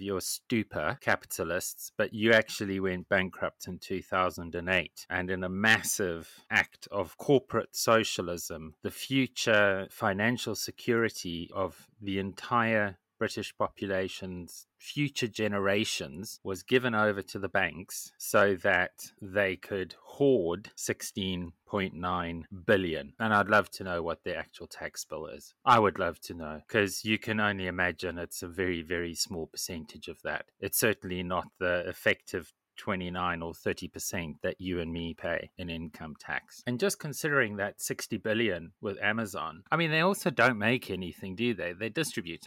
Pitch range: 90-115 Hz